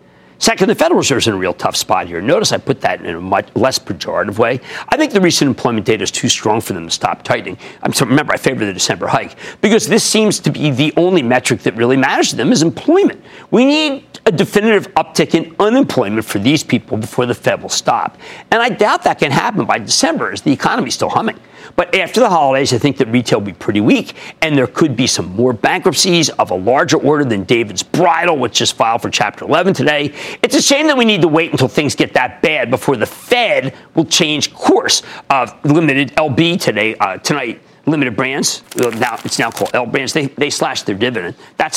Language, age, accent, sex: English, 50-69, American, male